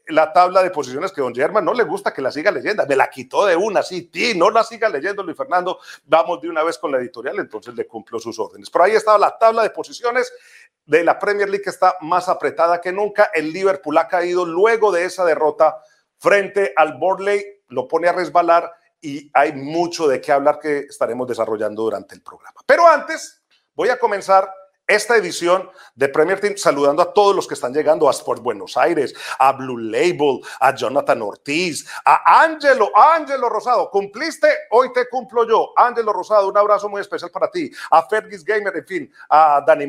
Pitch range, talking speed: 170-270 Hz, 200 wpm